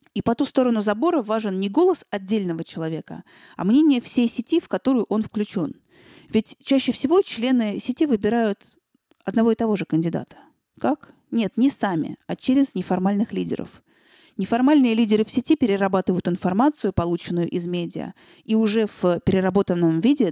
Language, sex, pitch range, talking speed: Russian, female, 185-245 Hz, 150 wpm